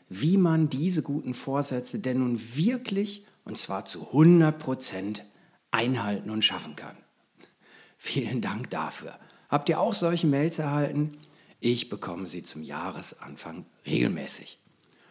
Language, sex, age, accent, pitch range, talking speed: German, male, 60-79, German, 115-175 Hz, 125 wpm